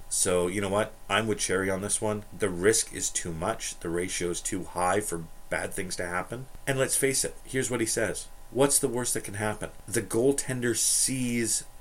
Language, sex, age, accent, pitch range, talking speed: English, male, 40-59, American, 85-110 Hz, 215 wpm